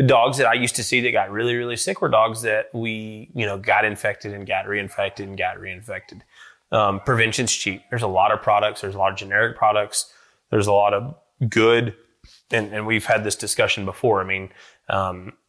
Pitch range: 100-115 Hz